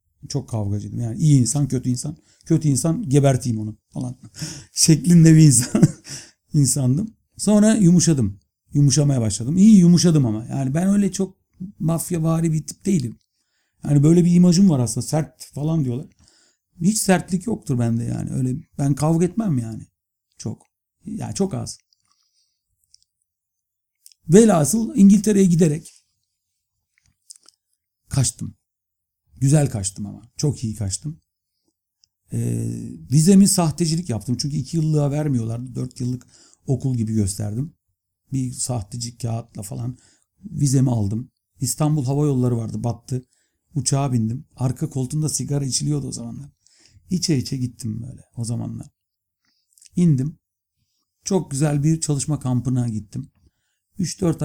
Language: Turkish